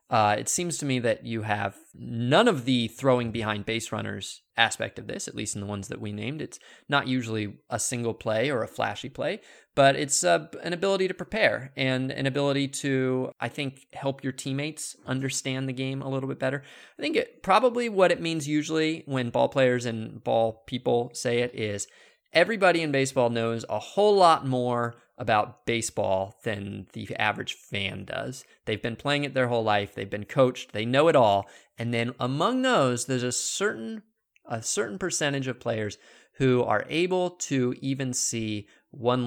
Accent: American